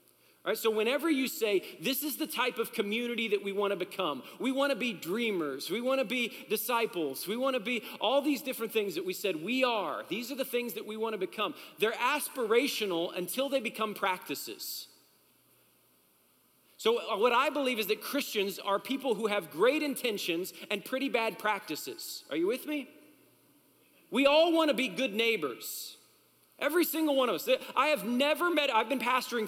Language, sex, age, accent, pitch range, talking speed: English, male, 40-59, American, 205-275 Hz, 195 wpm